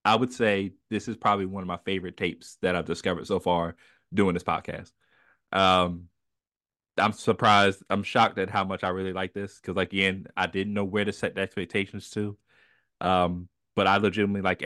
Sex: male